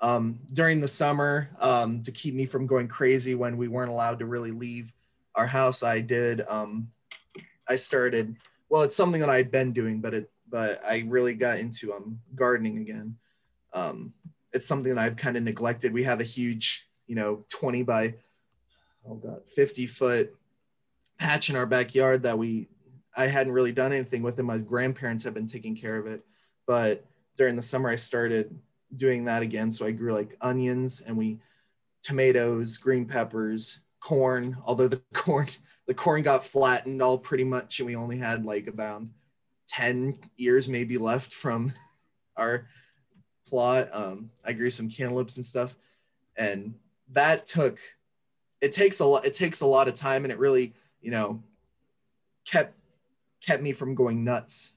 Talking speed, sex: 170 wpm, male